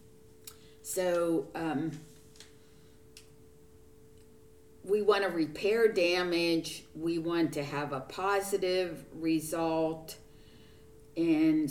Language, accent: English, American